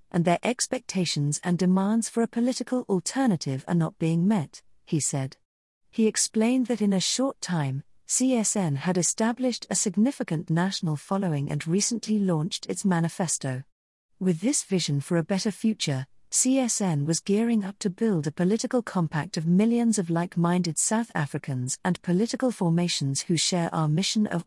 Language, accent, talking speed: English, British, 155 wpm